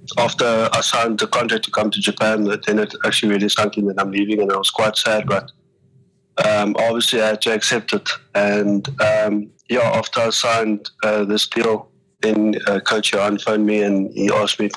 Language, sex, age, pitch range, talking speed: English, male, 20-39, 105-110 Hz, 205 wpm